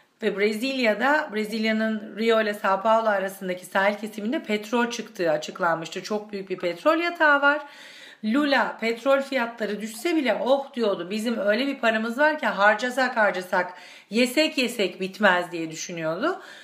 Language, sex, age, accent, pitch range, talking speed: Turkish, female, 40-59, native, 195-255 Hz, 140 wpm